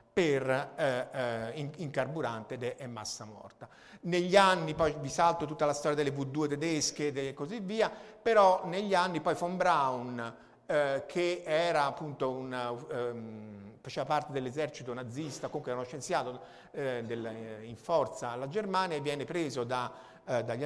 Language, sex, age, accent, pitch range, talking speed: Italian, male, 50-69, native, 130-175 Hz, 155 wpm